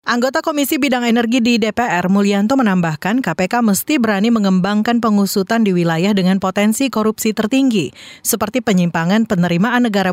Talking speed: 135 wpm